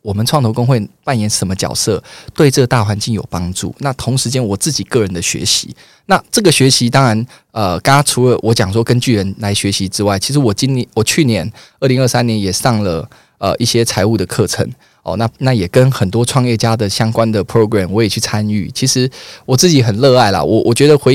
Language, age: Chinese, 20-39